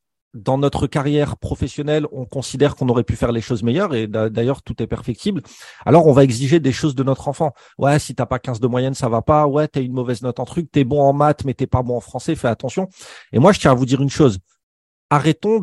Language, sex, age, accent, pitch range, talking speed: French, male, 40-59, French, 120-150 Hz, 265 wpm